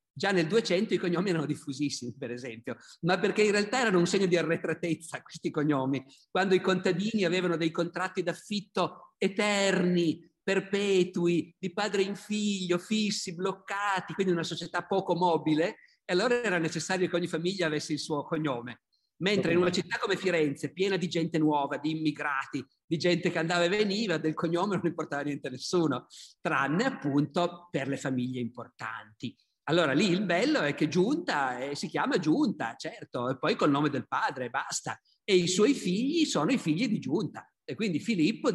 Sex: male